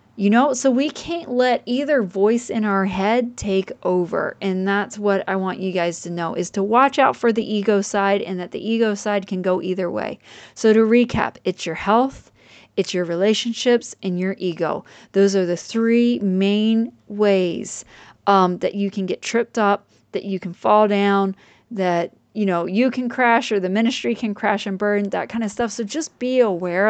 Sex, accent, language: female, American, English